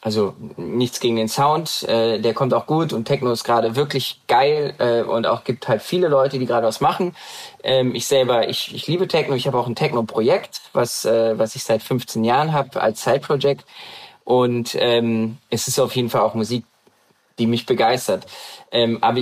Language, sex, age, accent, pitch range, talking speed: German, male, 20-39, German, 115-135 Hz, 195 wpm